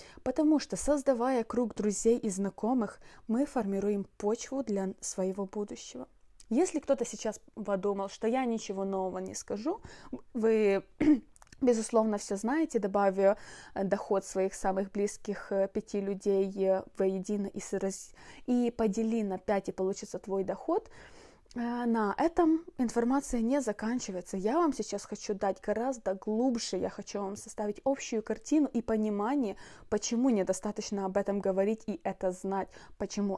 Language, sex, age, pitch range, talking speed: Russian, female, 20-39, 195-235 Hz, 135 wpm